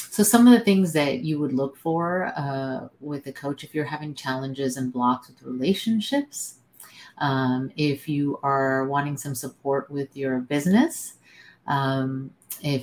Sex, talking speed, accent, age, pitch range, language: female, 160 wpm, American, 30-49, 135-165 Hz, English